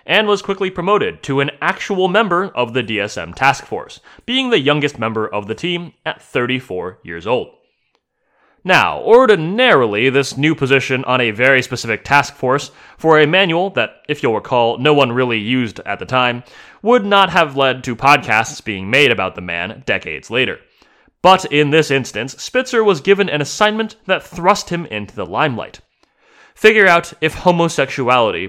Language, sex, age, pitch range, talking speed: English, male, 30-49, 120-175 Hz, 170 wpm